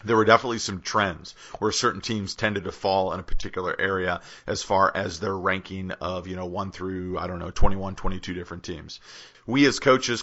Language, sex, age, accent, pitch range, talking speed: English, male, 40-59, American, 95-105 Hz, 205 wpm